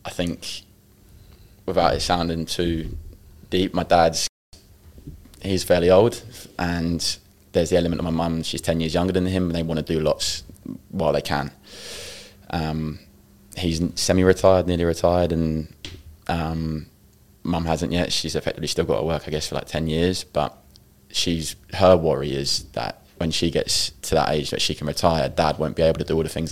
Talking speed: 180 wpm